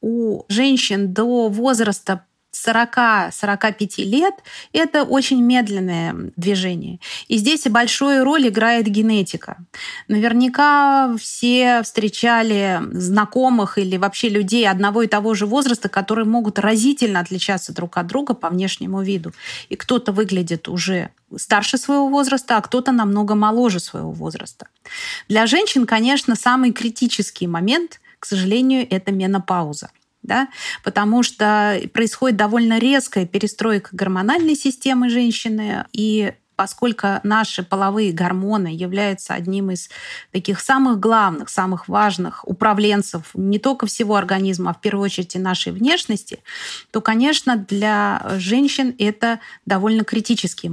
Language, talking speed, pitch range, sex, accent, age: Russian, 120 wpm, 195-245 Hz, female, native, 30-49